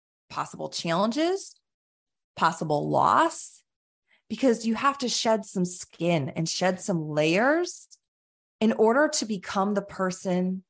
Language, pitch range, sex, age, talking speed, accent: English, 170-210 Hz, female, 20-39, 120 wpm, American